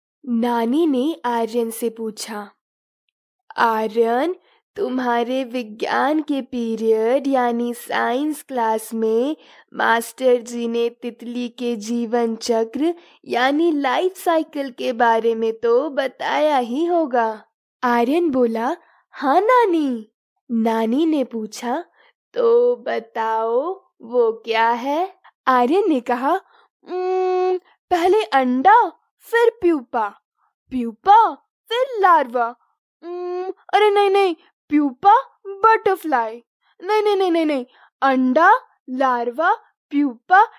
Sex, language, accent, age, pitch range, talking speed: female, Hindi, native, 20-39, 235-365 Hz, 95 wpm